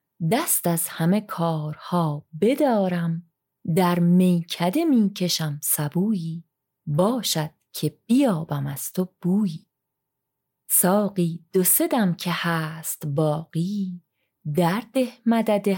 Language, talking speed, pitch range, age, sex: Persian, 85 wpm, 165-205 Hz, 30-49, female